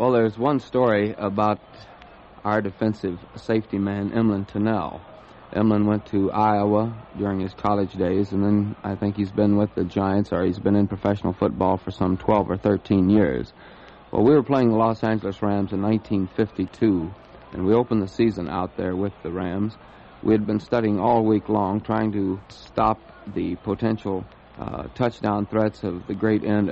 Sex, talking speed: male, 175 wpm